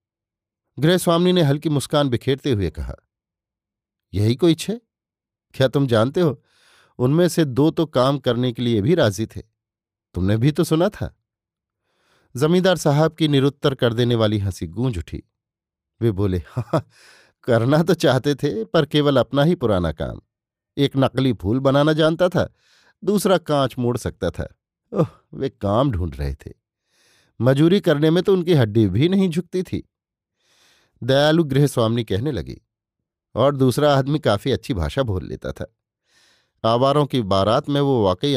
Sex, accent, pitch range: male, native, 105-150 Hz